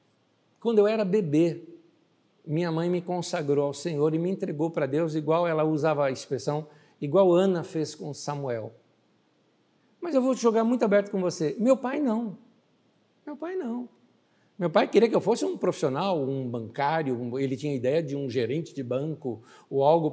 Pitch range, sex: 145-210 Hz, male